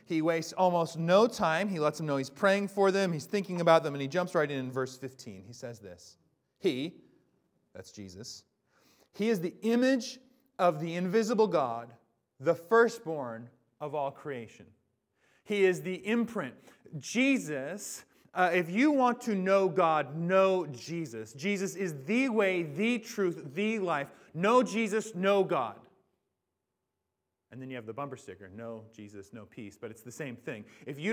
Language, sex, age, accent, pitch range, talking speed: English, male, 30-49, American, 160-210 Hz, 170 wpm